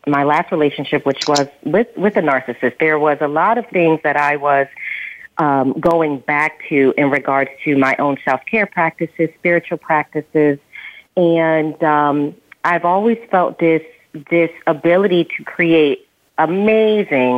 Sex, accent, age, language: female, American, 40-59, English